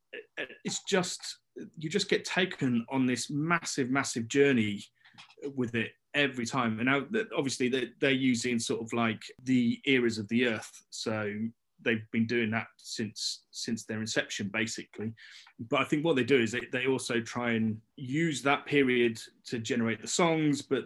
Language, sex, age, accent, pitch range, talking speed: English, male, 30-49, British, 110-130 Hz, 165 wpm